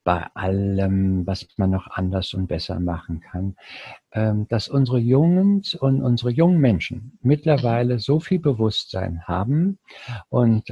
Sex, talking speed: male, 130 wpm